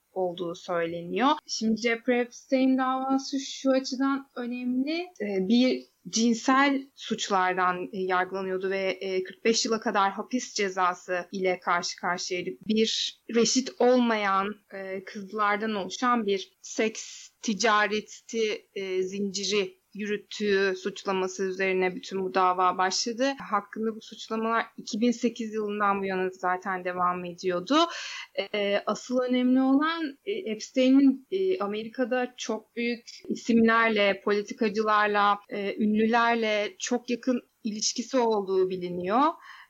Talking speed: 95 wpm